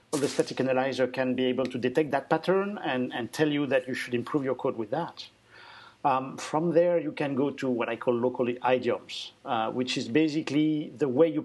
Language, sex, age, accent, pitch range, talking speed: English, male, 50-69, French, 125-160 Hz, 220 wpm